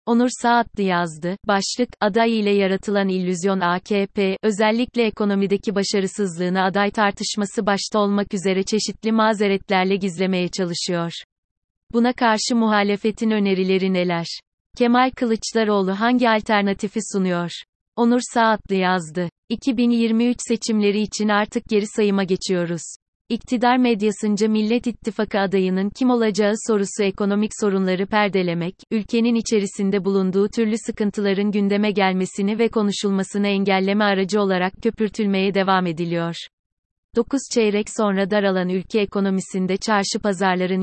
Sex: female